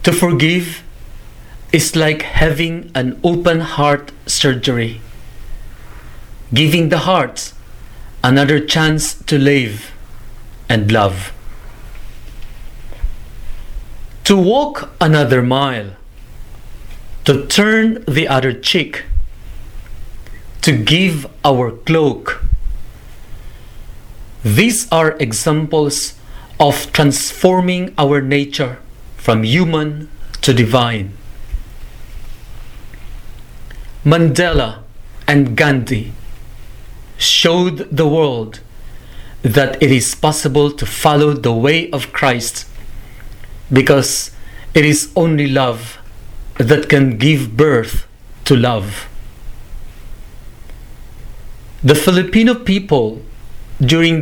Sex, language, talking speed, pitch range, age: male, English, 80 wpm, 115-155 Hz, 40-59